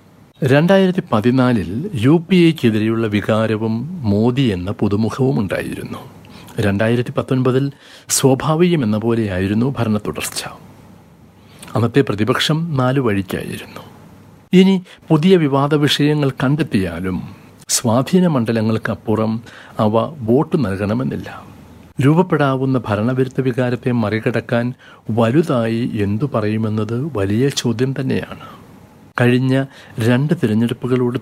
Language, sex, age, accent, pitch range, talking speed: Malayalam, male, 60-79, native, 110-135 Hz, 75 wpm